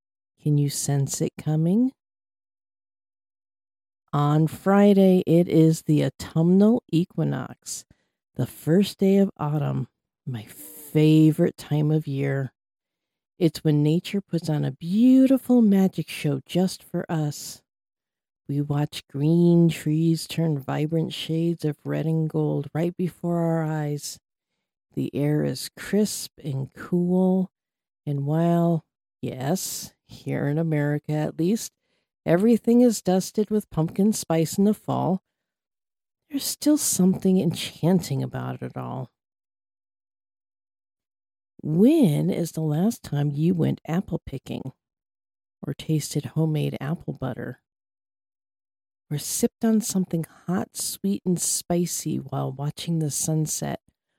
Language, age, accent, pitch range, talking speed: English, 50-69, American, 145-185 Hz, 115 wpm